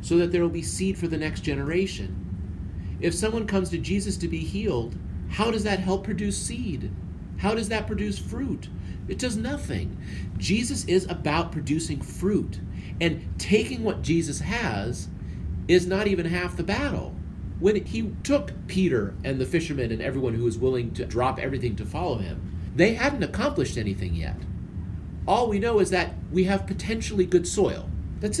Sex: male